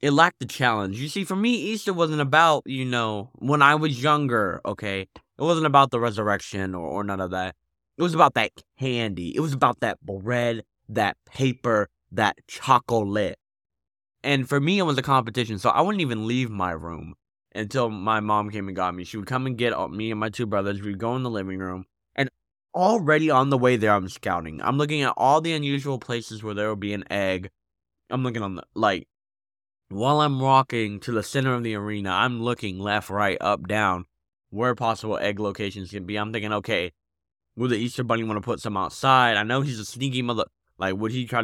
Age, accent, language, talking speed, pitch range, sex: 20-39, American, English, 215 wpm, 100-135 Hz, male